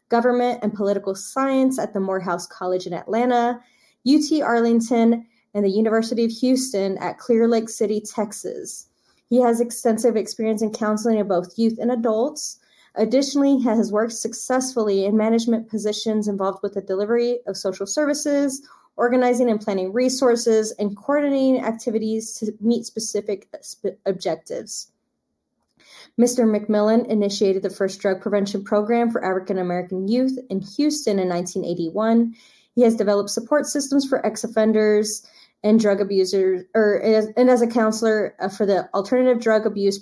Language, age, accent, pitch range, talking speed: English, 20-39, American, 195-240 Hz, 140 wpm